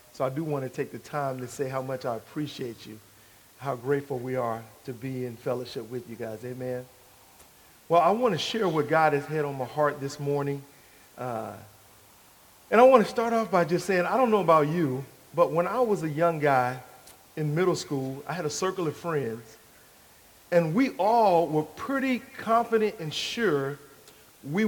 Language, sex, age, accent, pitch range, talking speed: English, male, 40-59, American, 140-195 Hz, 195 wpm